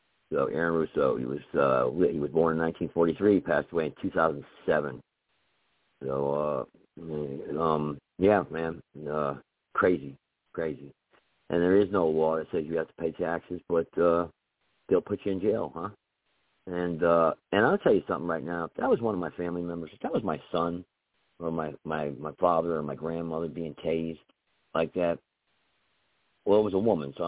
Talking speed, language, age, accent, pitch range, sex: 190 wpm, English, 50-69, American, 80-95 Hz, male